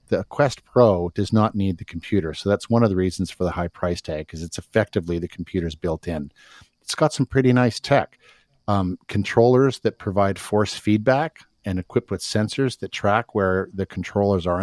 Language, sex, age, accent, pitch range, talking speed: English, male, 50-69, American, 90-115 Hz, 195 wpm